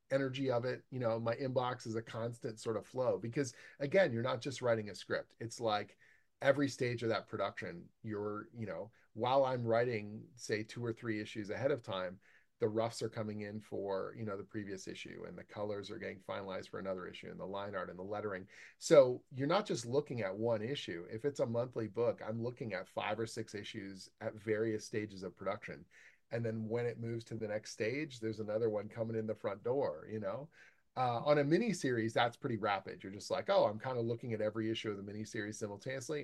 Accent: American